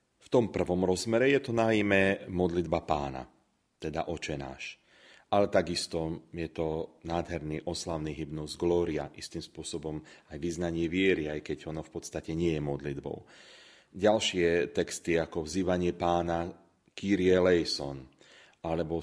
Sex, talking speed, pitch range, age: male, 125 wpm, 80-100 Hz, 30-49